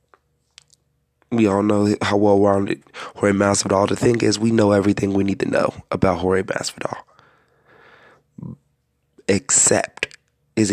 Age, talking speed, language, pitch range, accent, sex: 20-39, 125 wpm, English, 95-105 Hz, American, male